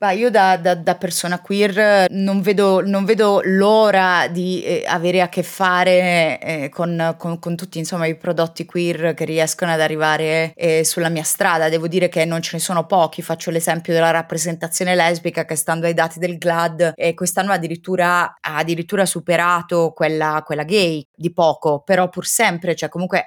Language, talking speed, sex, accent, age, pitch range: Italian, 185 wpm, female, native, 20-39, 165-195 Hz